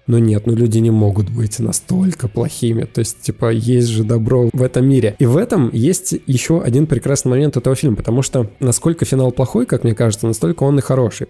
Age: 20-39